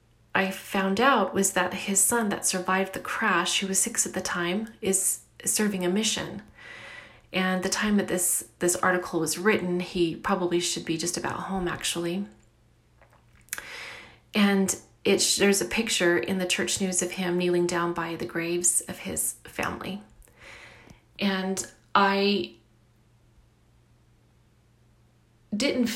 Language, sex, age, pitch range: English, female, 30-49, 175-195 Hz